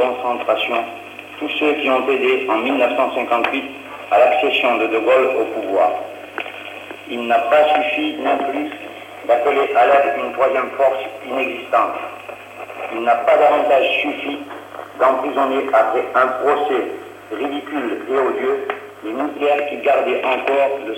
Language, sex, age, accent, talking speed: French, male, 60-79, French, 130 wpm